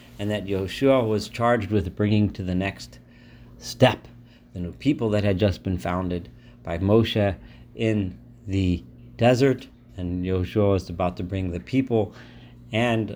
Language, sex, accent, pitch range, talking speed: English, male, American, 95-125 Hz, 150 wpm